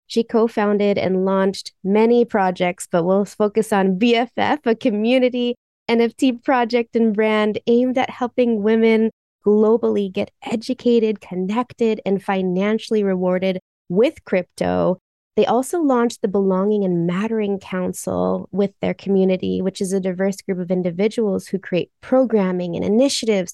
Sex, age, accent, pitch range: female, 20-39, American, 190-240 Hz